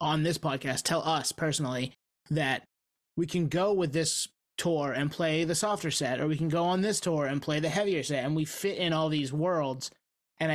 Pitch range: 145-170 Hz